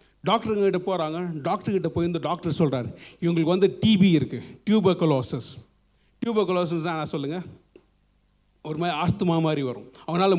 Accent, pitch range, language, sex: native, 145-200 Hz, Tamil, male